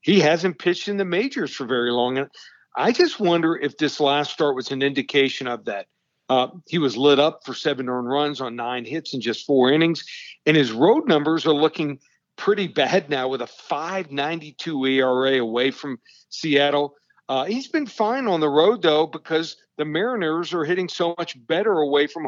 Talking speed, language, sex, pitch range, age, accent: 195 wpm, English, male, 135-165 Hz, 50-69, American